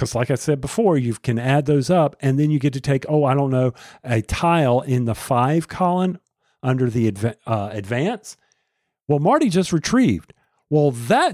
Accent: American